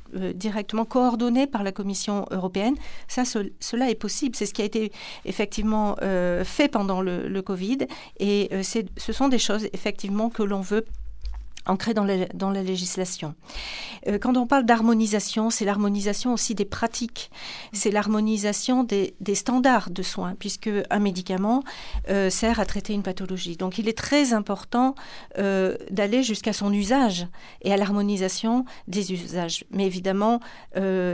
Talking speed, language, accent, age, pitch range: 160 wpm, French, French, 50-69, 195-230 Hz